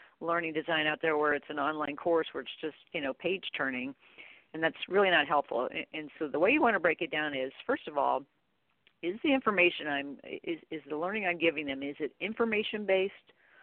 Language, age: English, 50-69